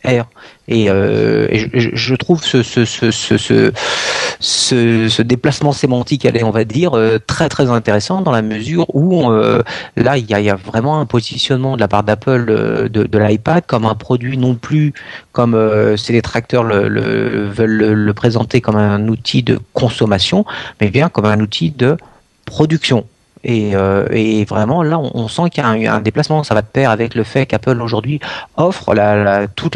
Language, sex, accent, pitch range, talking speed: French, male, French, 110-140 Hz, 195 wpm